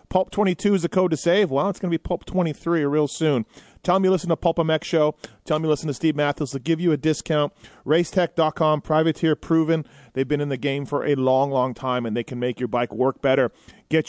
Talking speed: 240 wpm